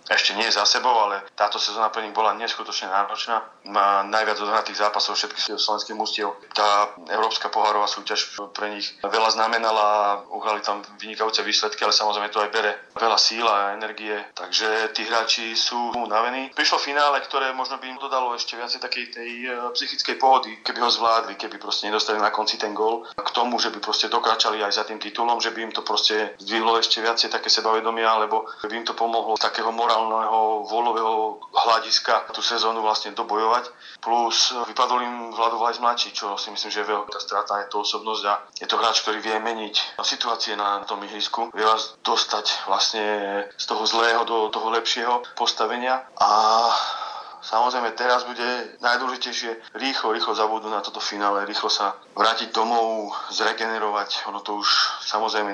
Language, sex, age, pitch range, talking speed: Slovak, male, 30-49, 105-115 Hz, 175 wpm